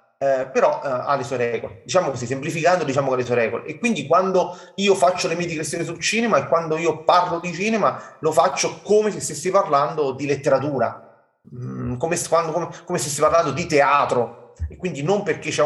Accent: native